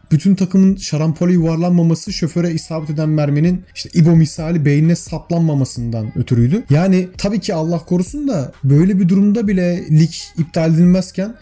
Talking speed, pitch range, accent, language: 140 wpm, 140-195 Hz, native, Turkish